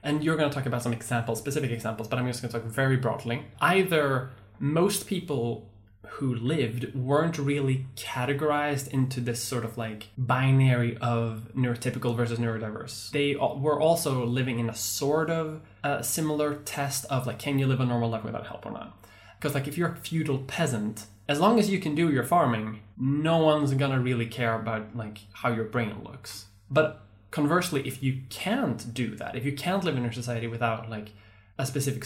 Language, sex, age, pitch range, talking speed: English, male, 10-29, 115-150 Hz, 195 wpm